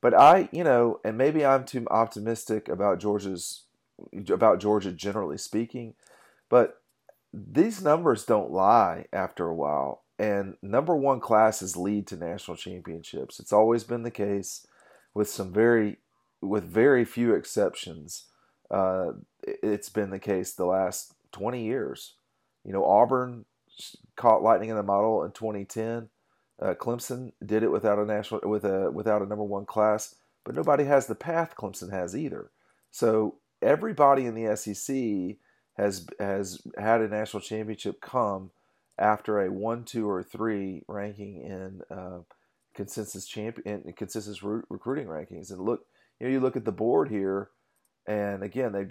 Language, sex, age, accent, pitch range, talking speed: English, male, 40-59, American, 100-120 Hz, 155 wpm